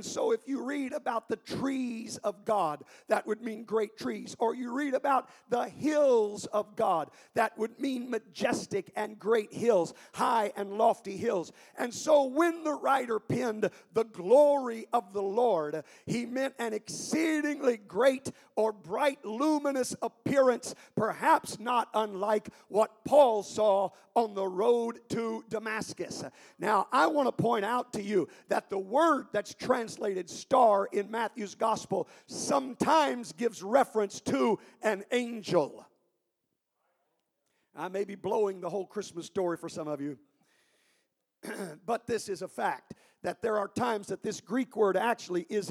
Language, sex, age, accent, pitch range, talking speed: English, male, 50-69, American, 205-250 Hz, 150 wpm